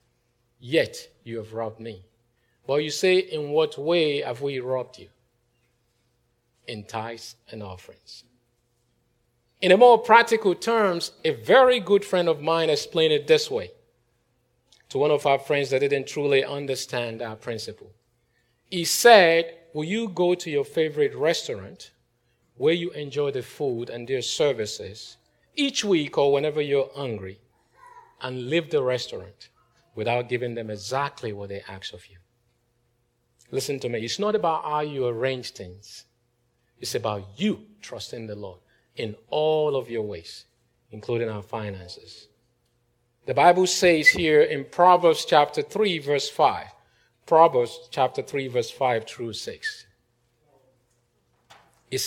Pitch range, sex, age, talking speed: 120-175 Hz, male, 50-69, 140 wpm